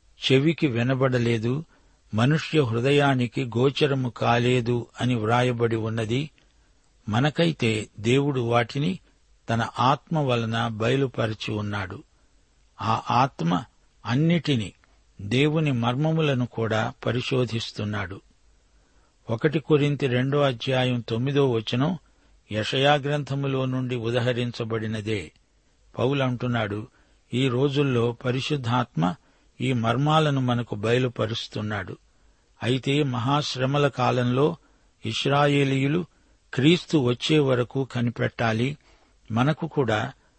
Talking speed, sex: 75 wpm, male